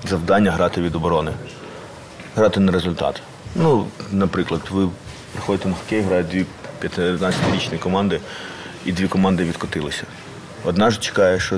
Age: 30-49